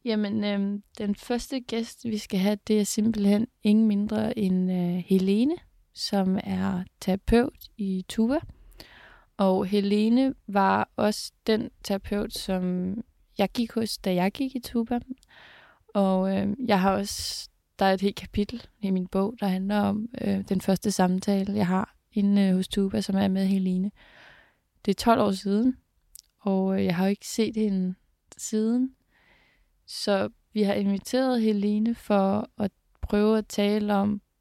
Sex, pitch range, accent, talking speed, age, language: female, 190-215 Hz, native, 150 wpm, 20-39, Danish